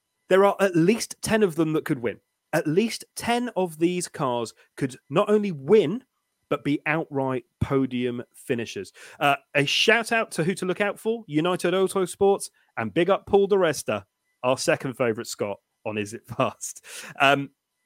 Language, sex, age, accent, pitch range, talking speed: English, male, 30-49, British, 130-190 Hz, 180 wpm